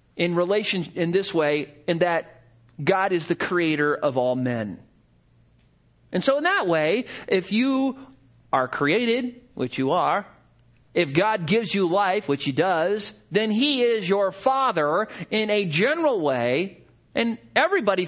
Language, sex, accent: English, male, American